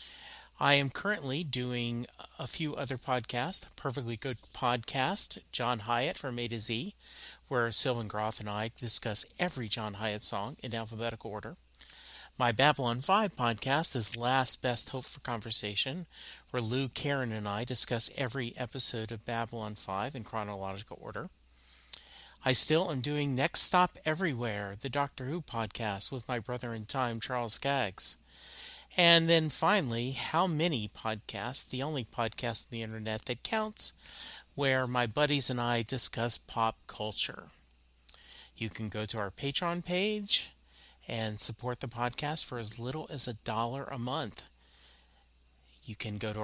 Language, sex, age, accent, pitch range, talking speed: English, male, 40-59, American, 110-140 Hz, 150 wpm